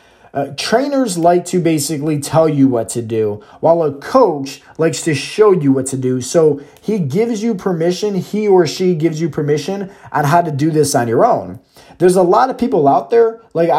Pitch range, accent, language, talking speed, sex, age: 130-170 Hz, American, English, 205 wpm, male, 20-39